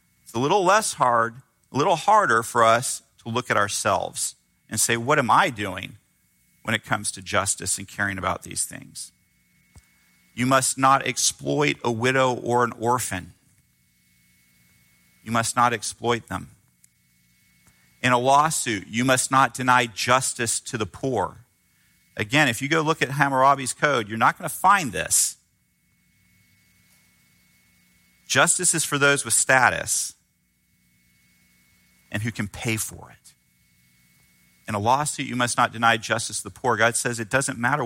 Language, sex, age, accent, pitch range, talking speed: English, male, 40-59, American, 90-125 Hz, 150 wpm